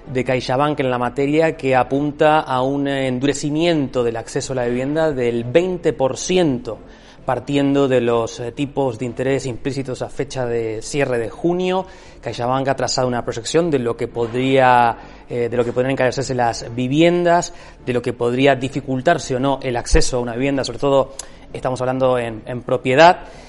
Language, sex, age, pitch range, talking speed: Spanish, male, 30-49, 125-160 Hz, 170 wpm